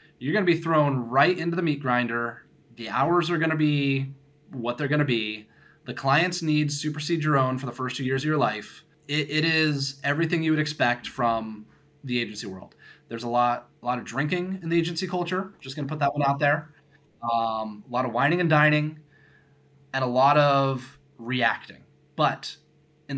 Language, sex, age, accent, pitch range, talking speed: English, male, 20-39, American, 125-150 Hz, 195 wpm